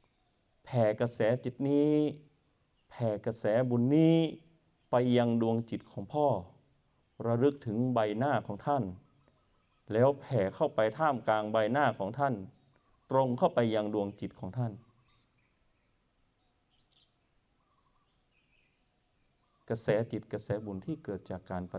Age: 30-49